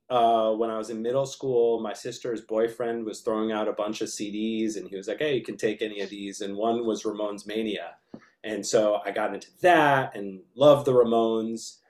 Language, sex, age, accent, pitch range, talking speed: English, male, 30-49, American, 105-130 Hz, 215 wpm